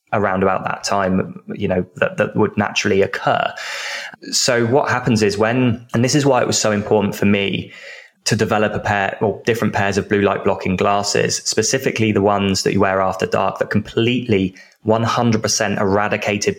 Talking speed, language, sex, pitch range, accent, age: 190 wpm, English, male, 100-110 Hz, British, 20-39